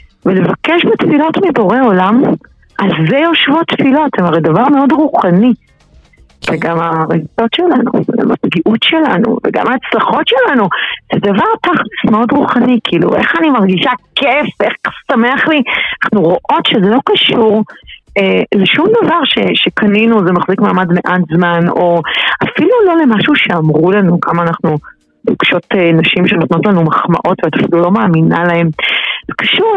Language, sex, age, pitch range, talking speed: Hebrew, female, 40-59, 175-255 Hz, 135 wpm